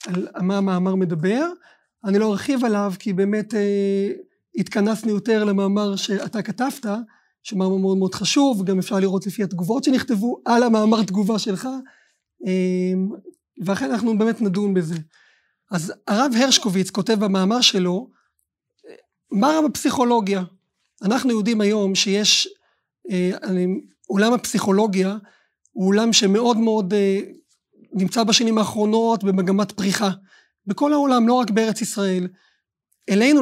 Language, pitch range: Hebrew, 195-240 Hz